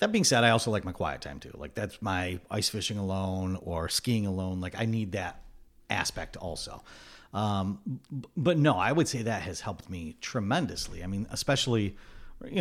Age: 50-69